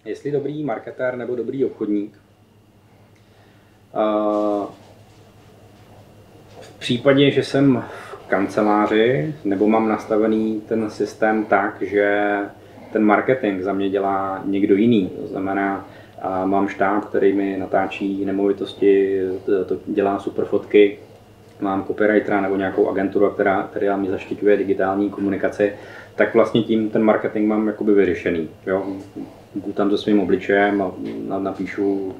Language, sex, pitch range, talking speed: Czech, male, 100-105 Hz, 115 wpm